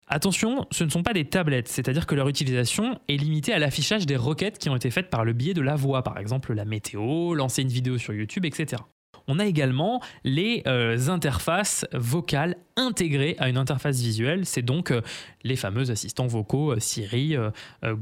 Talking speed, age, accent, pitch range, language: 200 wpm, 20-39, French, 130-180 Hz, French